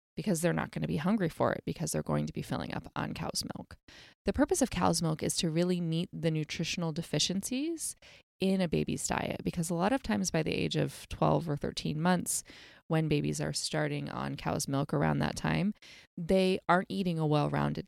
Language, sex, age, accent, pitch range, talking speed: English, female, 20-39, American, 130-205 Hz, 210 wpm